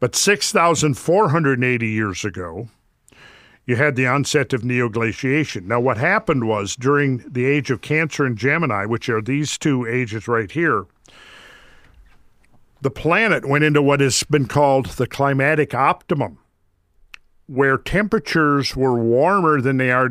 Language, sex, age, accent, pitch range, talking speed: English, male, 50-69, American, 120-150 Hz, 135 wpm